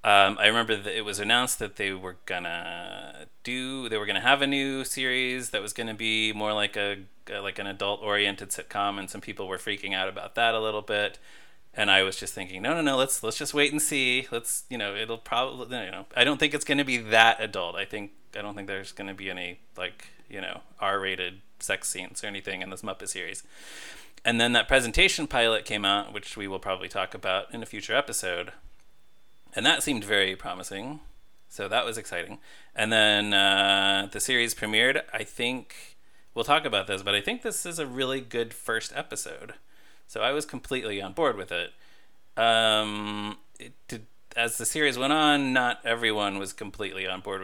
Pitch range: 100-125 Hz